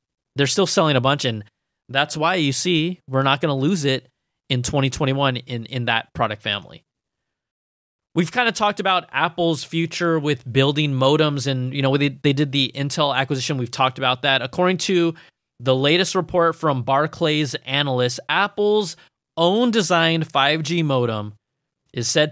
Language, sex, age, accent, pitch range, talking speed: English, male, 20-39, American, 130-165 Hz, 165 wpm